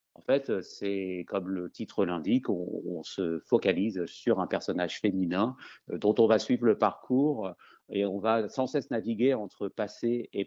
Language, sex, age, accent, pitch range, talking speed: French, male, 50-69, French, 95-115 Hz, 170 wpm